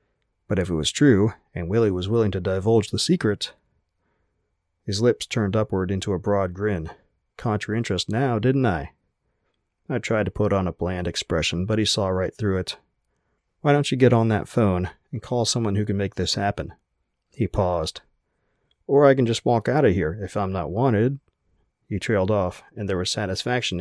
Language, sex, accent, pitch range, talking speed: English, male, American, 90-115 Hz, 190 wpm